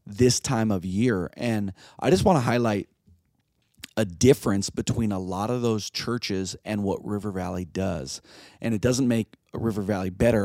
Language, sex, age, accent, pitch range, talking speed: English, male, 40-59, American, 105-130 Hz, 180 wpm